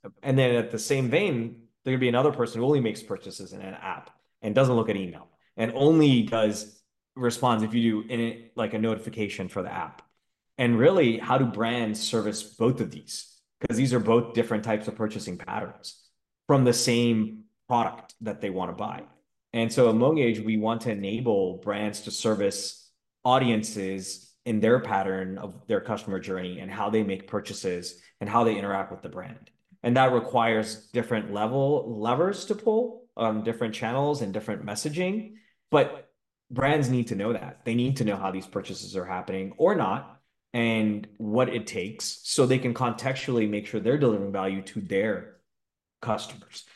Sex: male